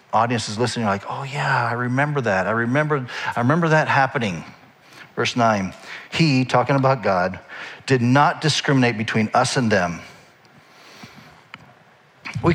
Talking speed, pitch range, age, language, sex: 140 wpm, 110-145 Hz, 50-69, English, male